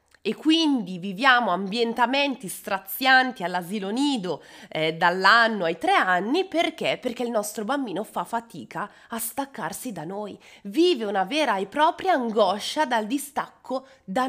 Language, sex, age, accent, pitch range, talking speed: Italian, female, 20-39, native, 195-290 Hz, 135 wpm